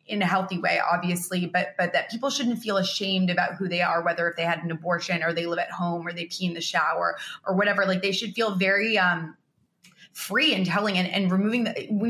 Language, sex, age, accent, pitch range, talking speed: English, female, 20-39, American, 175-200 Hz, 245 wpm